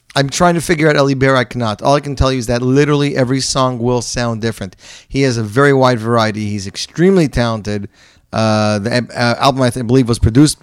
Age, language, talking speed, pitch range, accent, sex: 30-49, English, 225 wpm, 105-130 Hz, American, male